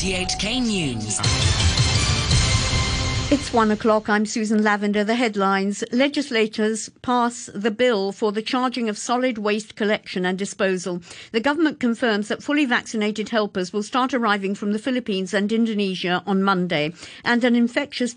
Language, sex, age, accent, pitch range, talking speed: English, female, 50-69, British, 195-235 Hz, 135 wpm